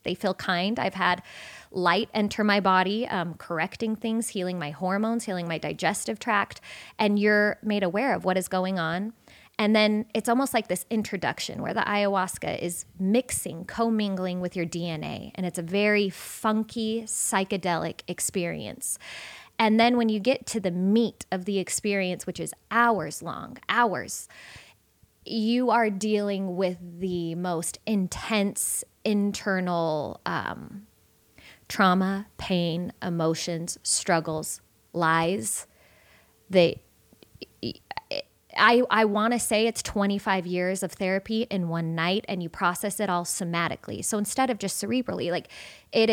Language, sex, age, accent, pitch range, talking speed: English, female, 20-39, American, 175-215 Hz, 140 wpm